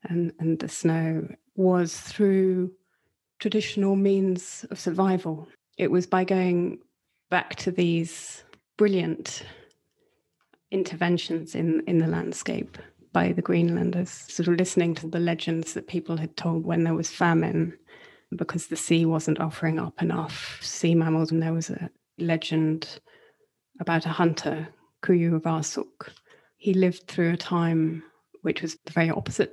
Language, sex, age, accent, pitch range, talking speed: English, female, 30-49, British, 160-185 Hz, 140 wpm